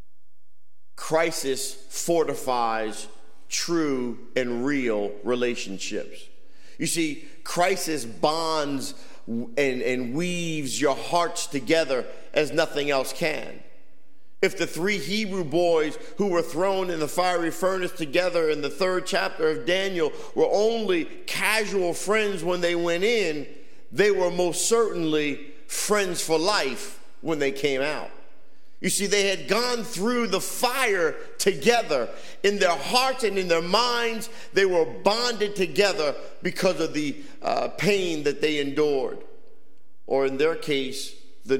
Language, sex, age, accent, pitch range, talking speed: English, male, 50-69, American, 150-200 Hz, 130 wpm